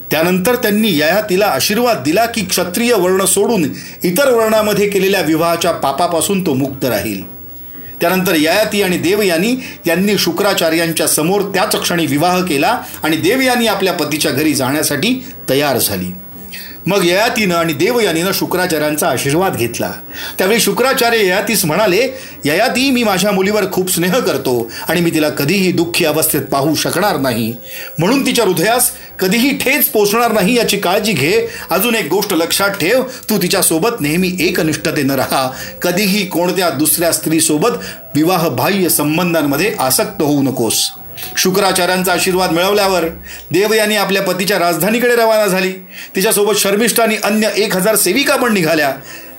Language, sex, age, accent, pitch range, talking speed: Marathi, male, 40-59, native, 160-205 Hz, 130 wpm